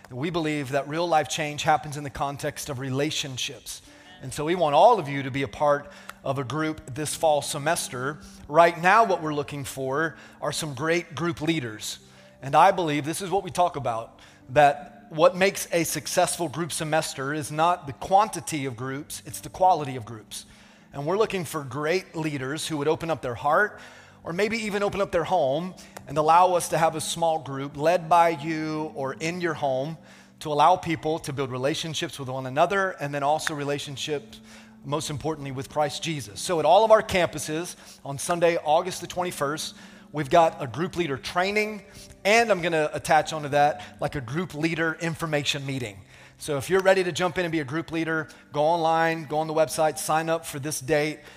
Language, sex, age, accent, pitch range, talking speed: English, male, 30-49, American, 145-170 Hz, 200 wpm